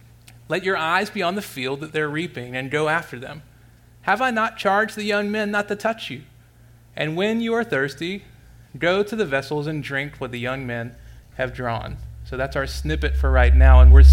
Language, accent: English, American